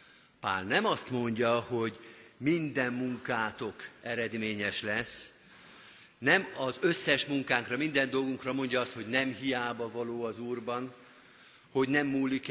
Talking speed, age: 125 wpm, 50-69